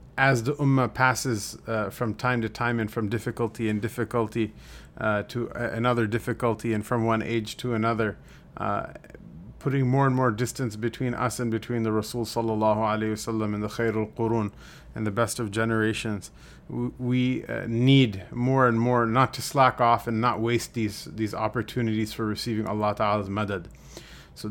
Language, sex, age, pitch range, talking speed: English, male, 30-49, 110-120 Hz, 175 wpm